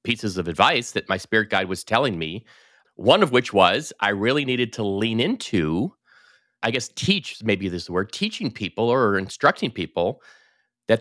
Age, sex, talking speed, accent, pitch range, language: 30-49, male, 185 wpm, American, 95-145 Hz, English